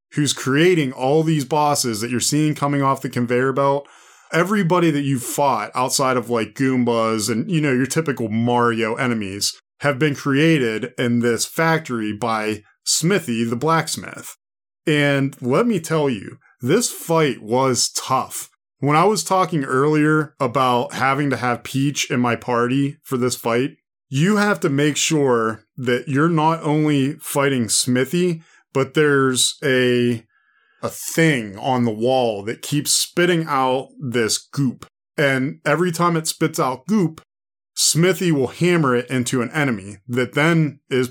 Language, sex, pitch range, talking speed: English, male, 120-150 Hz, 155 wpm